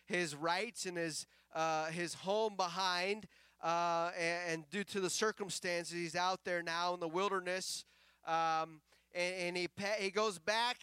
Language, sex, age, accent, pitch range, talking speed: English, male, 30-49, American, 175-220 Hz, 160 wpm